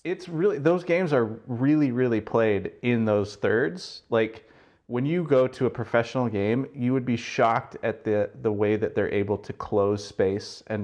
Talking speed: 190 wpm